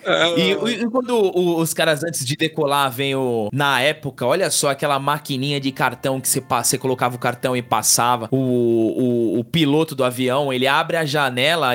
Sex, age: male, 20-39